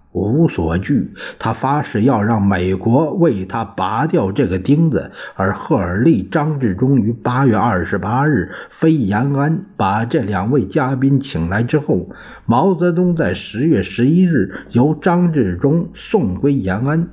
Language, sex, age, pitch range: Chinese, male, 50-69, 105-165 Hz